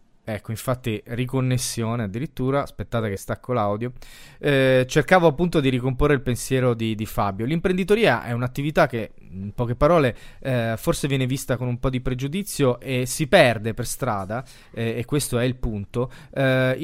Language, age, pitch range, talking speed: Italian, 20-39, 120-155 Hz, 160 wpm